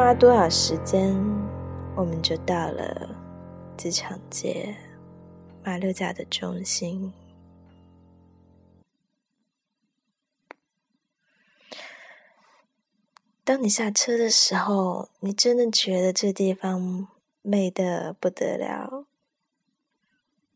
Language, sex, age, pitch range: Chinese, female, 20-39, 180-235 Hz